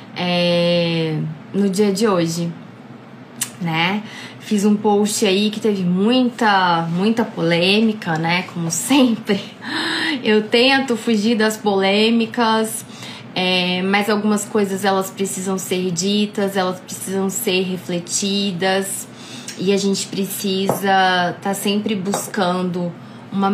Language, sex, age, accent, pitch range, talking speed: Portuguese, female, 20-39, Brazilian, 180-210 Hz, 105 wpm